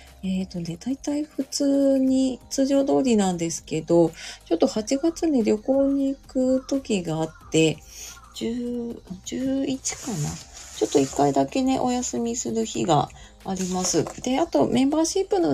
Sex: female